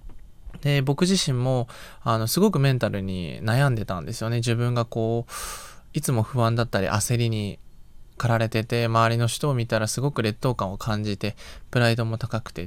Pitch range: 115-155 Hz